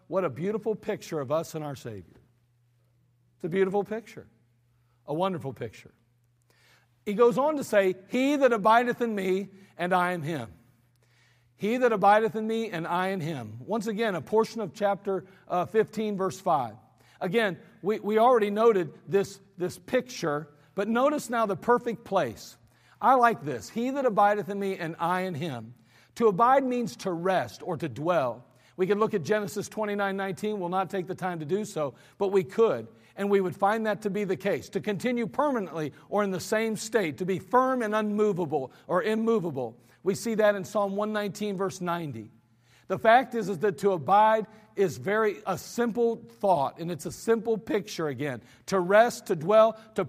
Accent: American